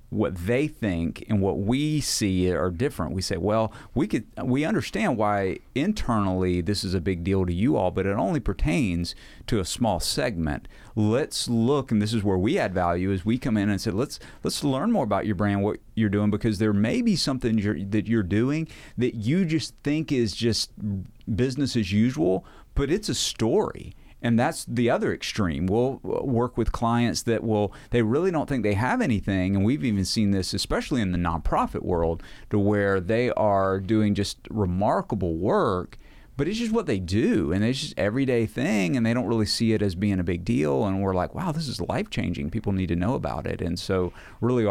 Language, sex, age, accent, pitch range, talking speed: English, male, 40-59, American, 95-115 Hz, 210 wpm